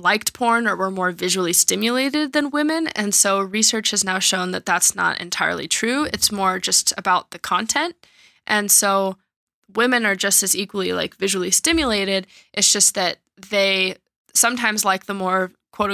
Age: 10-29